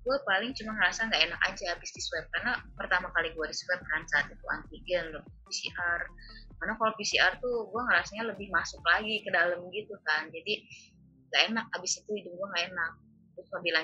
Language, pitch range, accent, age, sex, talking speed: Indonesian, 155-215 Hz, native, 20-39, female, 185 wpm